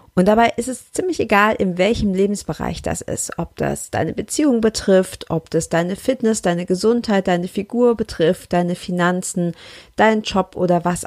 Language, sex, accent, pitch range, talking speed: German, female, German, 165-205 Hz, 170 wpm